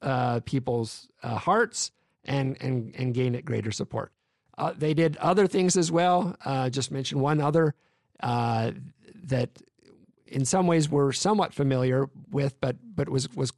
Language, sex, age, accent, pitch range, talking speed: English, male, 50-69, American, 130-165 Hz, 160 wpm